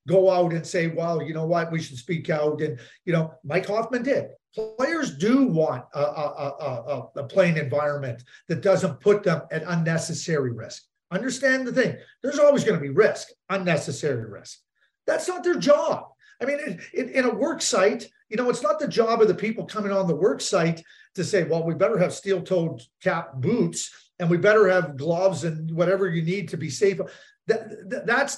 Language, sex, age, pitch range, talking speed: English, male, 40-59, 165-230 Hz, 190 wpm